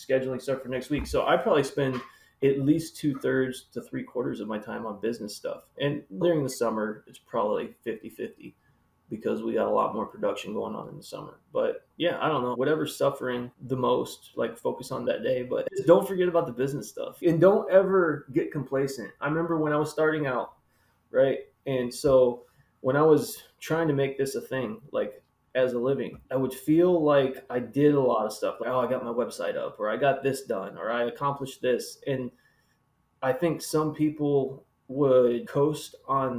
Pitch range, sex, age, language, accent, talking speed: 130-165 Hz, male, 20-39, English, American, 205 wpm